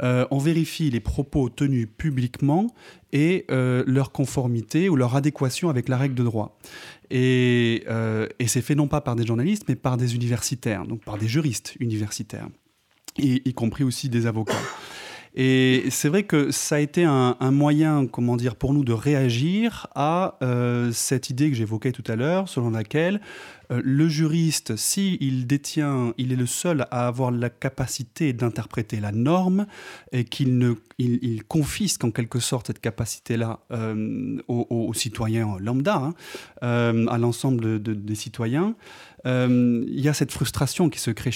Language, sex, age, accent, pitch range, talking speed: French, male, 30-49, French, 120-150 Hz, 175 wpm